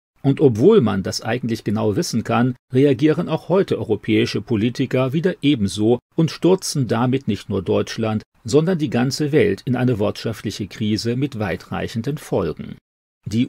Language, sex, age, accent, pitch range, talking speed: German, male, 40-59, German, 105-140 Hz, 145 wpm